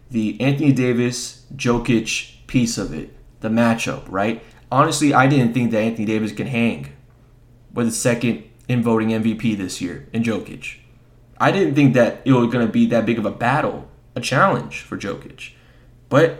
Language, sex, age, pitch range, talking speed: English, male, 20-39, 110-130 Hz, 170 wpm